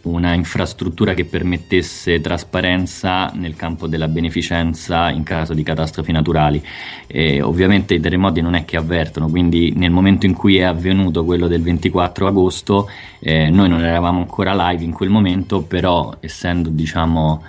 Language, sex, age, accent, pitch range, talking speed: Italian, male, 20-39, native, 80-90 Hz, 155 wpm